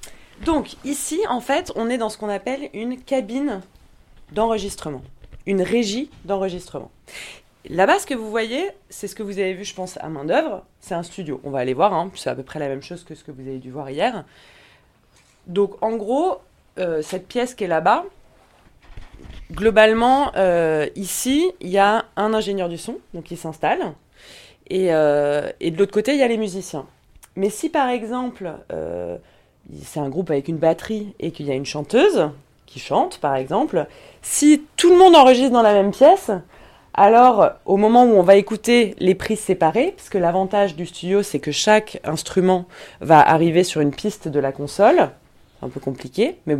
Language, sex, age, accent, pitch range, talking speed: French, female, 20-39, French, 160-240 Hz, 195 wpm